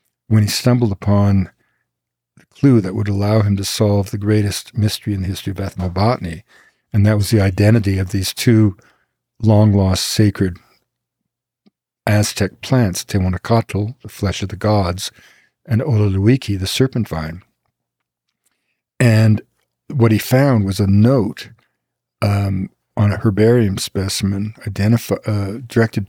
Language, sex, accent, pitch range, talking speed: English, male, American, 100-115 Hz, 130 wpm